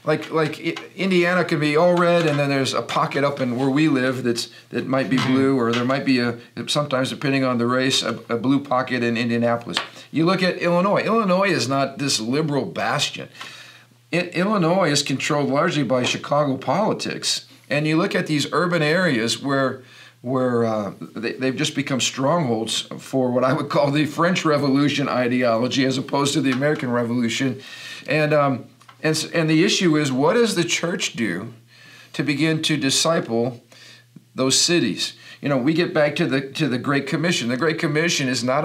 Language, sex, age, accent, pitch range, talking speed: English, male, 50-69, American, 130-160 Hz, 185 wpm